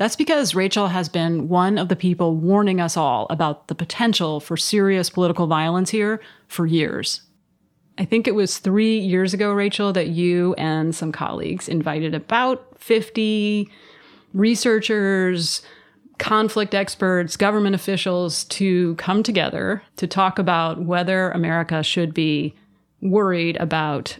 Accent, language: American, English